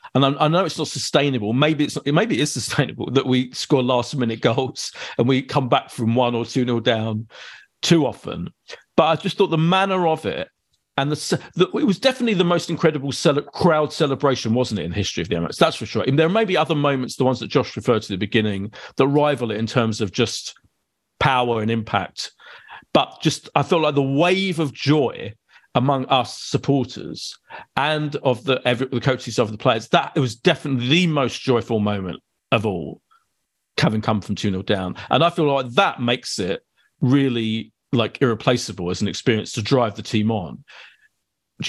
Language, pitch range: English, 115-150 Hz